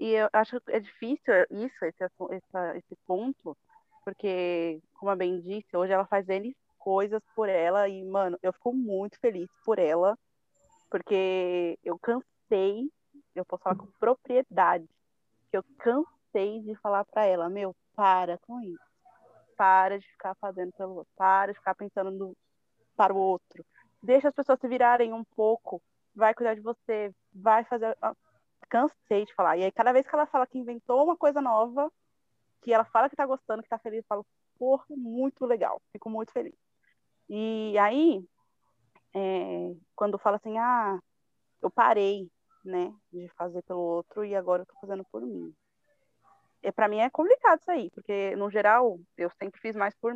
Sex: female